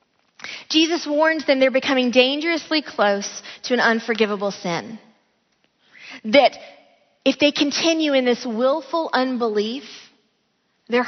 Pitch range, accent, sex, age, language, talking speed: 230-305 Hz, American, female, 20-39, English, 110 wpm